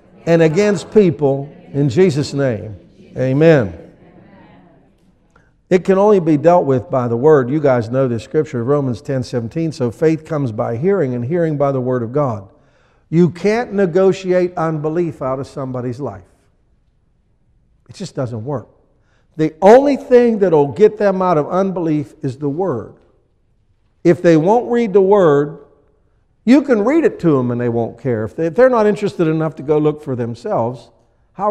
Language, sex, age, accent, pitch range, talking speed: English, male, 60-79, American, 125-175 Hz, 170 wpm